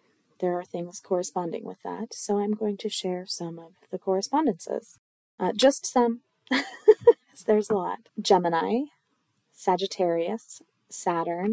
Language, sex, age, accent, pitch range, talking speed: English, female, 20-39, American, 175-225 Hz, 125 wpm